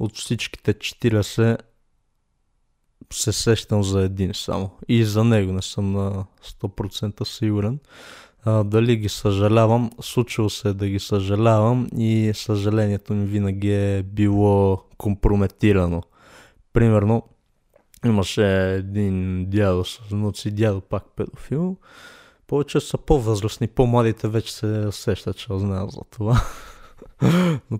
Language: Bulgarian